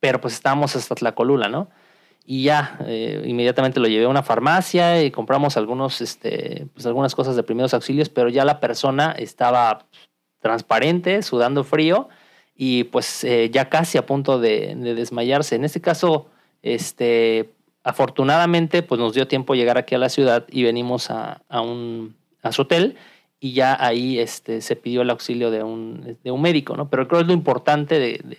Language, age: Spanish, 40-59